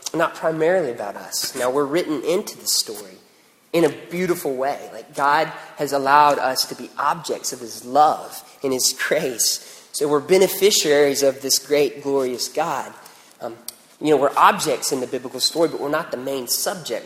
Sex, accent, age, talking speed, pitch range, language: male, American, 30-49, 180 wpm, 135-175 Hz, English